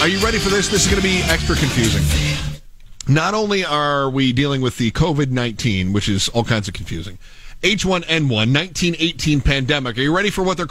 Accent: American